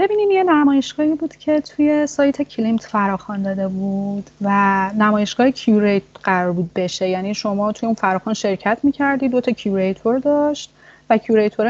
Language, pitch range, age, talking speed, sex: Persian, 190-245 Hz, 30-49, 150 wpm, female